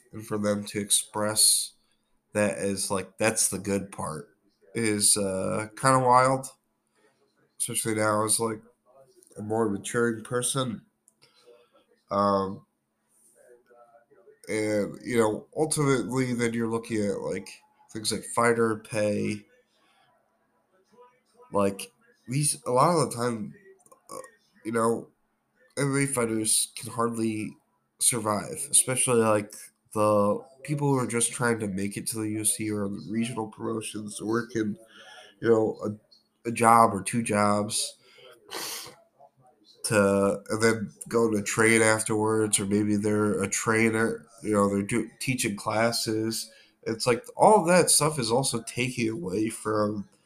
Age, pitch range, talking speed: 20-39, 105-125 Hz, 125 wpm